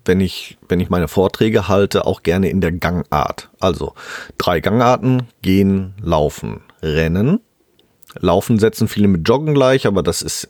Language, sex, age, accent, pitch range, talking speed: German, male, 40-59, German, 85-110 Hz, 150 wpm